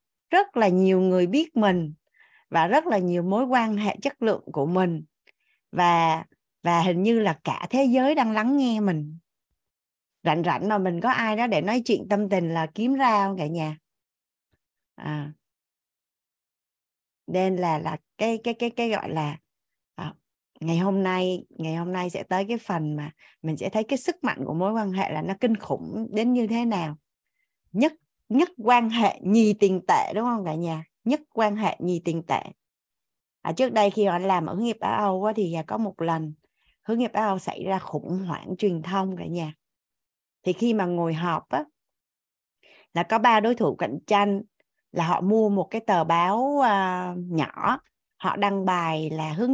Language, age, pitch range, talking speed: Vietnamese, 20-39, 165-225 Hz, 185 wpm